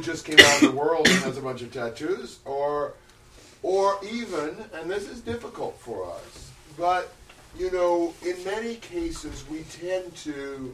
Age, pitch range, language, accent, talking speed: 40-59, 135-200 Hz, English, American, 170 wpm